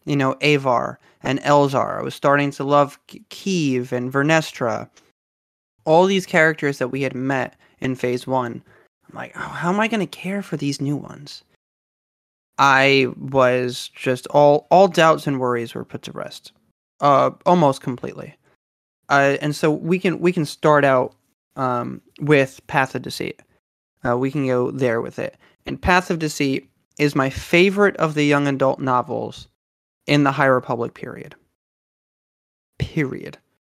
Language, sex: English, male